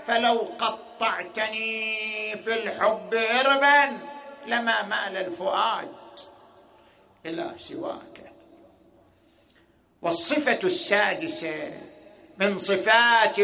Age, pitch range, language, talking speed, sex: 50-69, 215-290 Hz, Arabic, 65 wpm, male